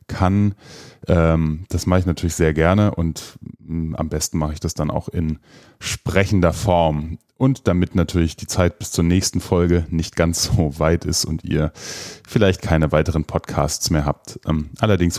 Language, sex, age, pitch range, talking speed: German, male, 30-49, 85-105 Hz, 160 wpm